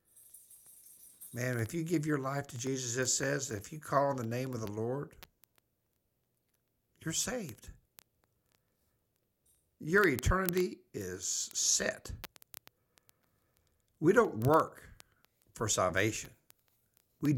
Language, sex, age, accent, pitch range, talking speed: English, male, 60-79, American, 100-125 Hz, 105 wpm